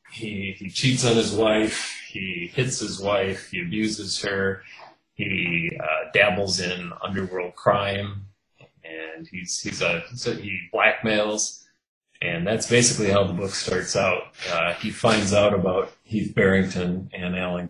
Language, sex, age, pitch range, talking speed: English, male, 30-49, 95-110 Hz, 130 wpm